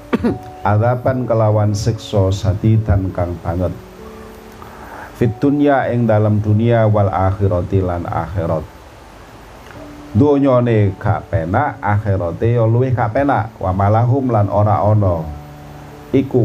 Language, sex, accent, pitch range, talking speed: Indonesian, male, native, 95-115 Hz, 100 wpm